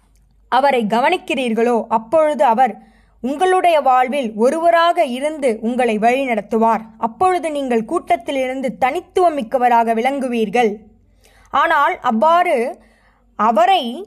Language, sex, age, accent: Tamil, female, 20-39, native